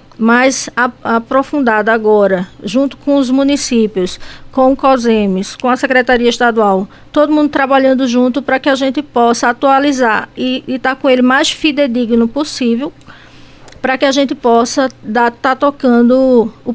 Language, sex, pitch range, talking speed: Portuguese, female, 235-280 Hz, 145 wpm